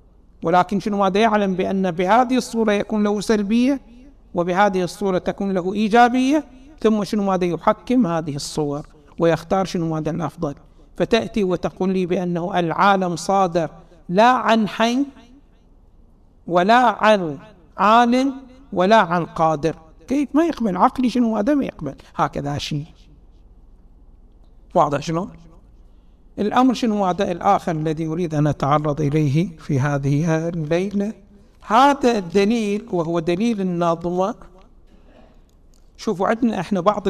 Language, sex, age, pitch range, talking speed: Arabic, male, 60-79, 160-230 Hz, 120 wpm